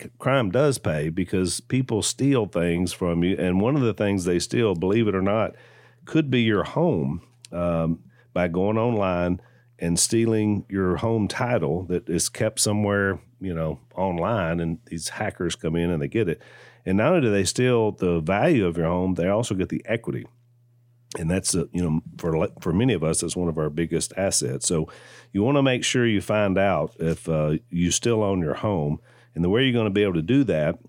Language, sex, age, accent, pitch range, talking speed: English, male, 40-59, American, 85-115 Hz, 210 wpm